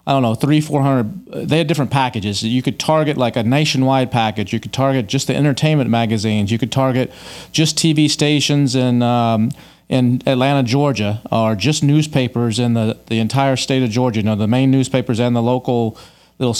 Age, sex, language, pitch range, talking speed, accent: 40-59, male, English, 120-145 Hz, 195 wpm, American